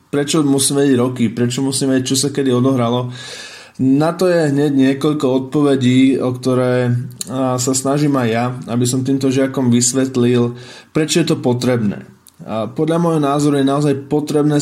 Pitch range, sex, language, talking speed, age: 120-140 Hz, male, Slovak, 150 wpm, 20-39